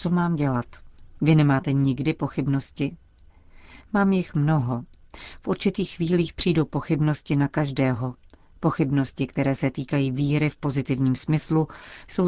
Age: 40-59